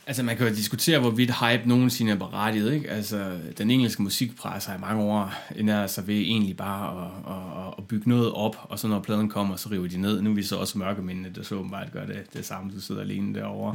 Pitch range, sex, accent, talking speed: 105-125 Hz, male, native, 245 wpm